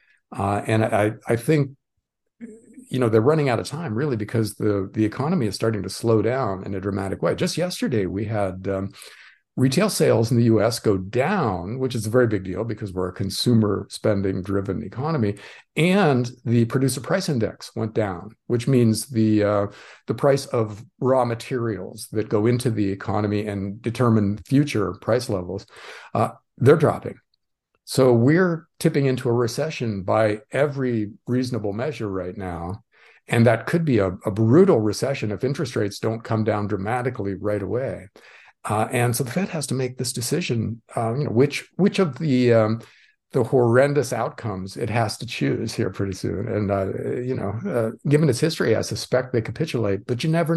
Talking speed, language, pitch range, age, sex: 180 wpm, English, 105-130 Hz, 50-69, male